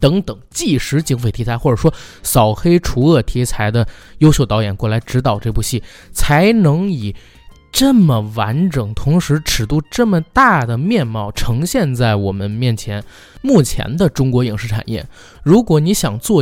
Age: 20-39